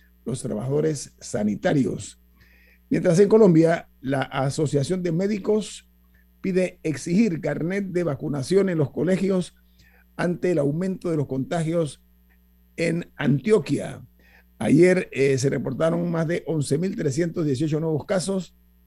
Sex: male